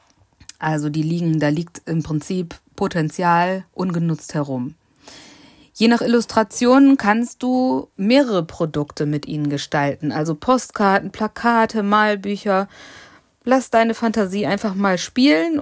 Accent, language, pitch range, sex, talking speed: German, German, 165-225 Hz, female, 115 wpm